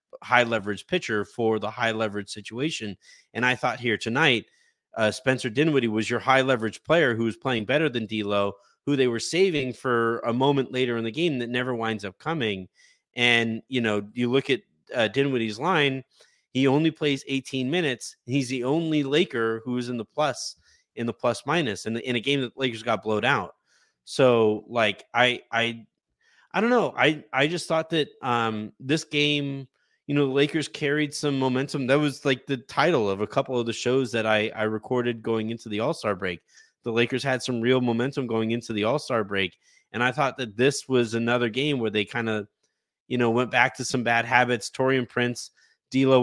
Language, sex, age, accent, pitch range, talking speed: English, male, 30-49, American, 115-135 Hz, 195 wpm